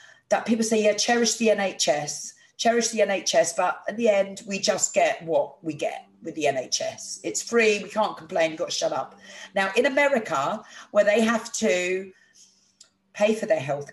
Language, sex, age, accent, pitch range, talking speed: English, female, 40-59, British, 160-220 Hz, 190 wpm